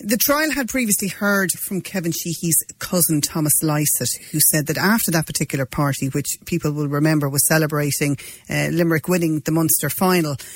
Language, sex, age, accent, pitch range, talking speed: English, female, 40-59, Irish, 145-175 Hz, 170 wpm